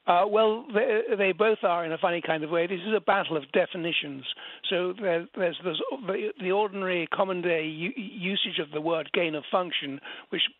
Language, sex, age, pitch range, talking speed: English, male, 60-79, 155-190 Hz, 180 wpm